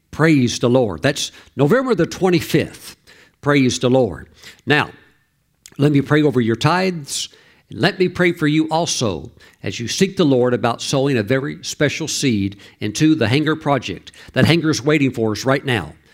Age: 60-79